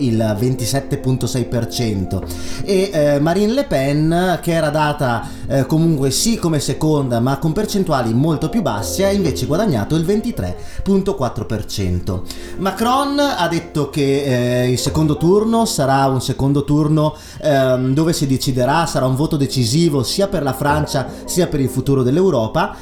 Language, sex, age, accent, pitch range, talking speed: Italian, male, 30-49, native, 125-165 Hz, 145 wpm